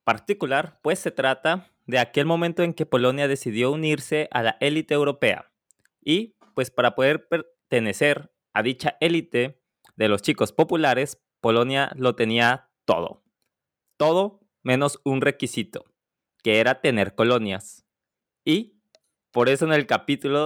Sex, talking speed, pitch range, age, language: male, 135 wpm, 120-155 Hz, 20-39, Spanish